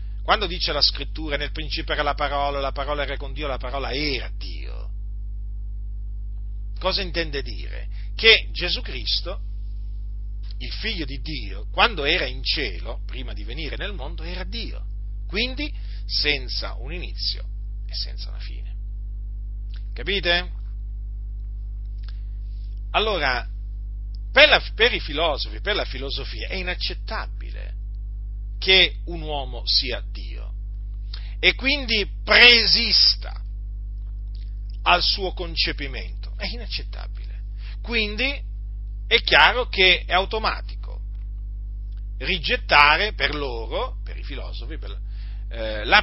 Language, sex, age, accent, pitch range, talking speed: Italian, male, 40-59, native, 100-145 Hz, 110 wpm